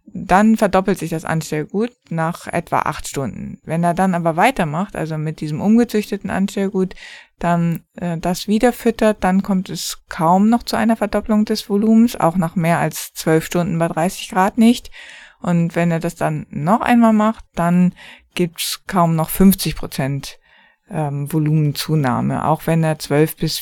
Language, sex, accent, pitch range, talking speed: German, female, German, 170-210 Hz, 170 wpm